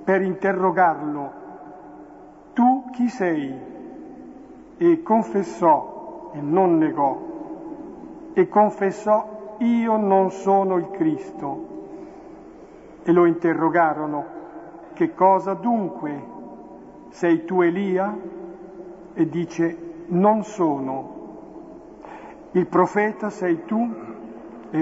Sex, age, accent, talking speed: male, 50-69, native, 85 wpm